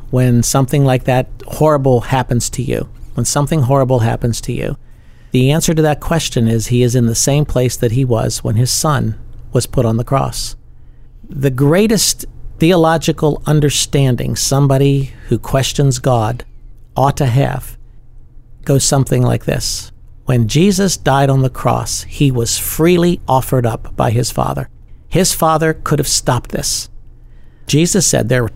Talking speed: 160 wpm